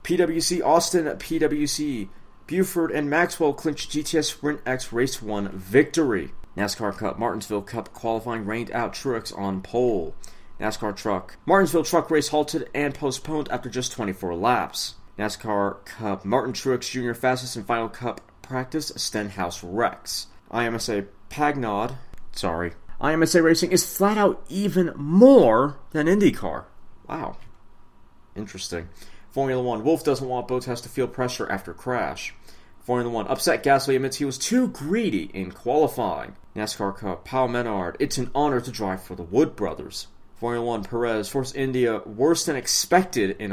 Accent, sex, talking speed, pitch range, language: American, male, 145 wpm, 105-155 Hz, English